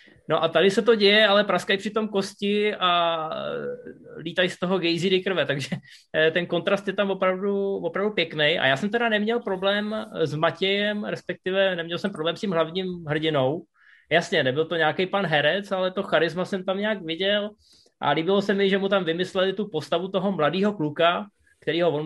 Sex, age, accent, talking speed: male, 20-39, native, 190 wpm